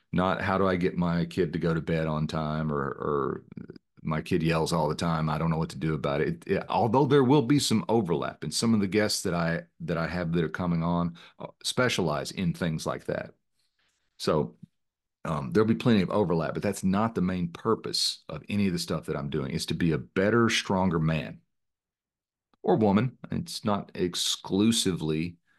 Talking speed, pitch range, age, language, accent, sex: 210 wpm, 80-100 Hz, 40-59, English, American, male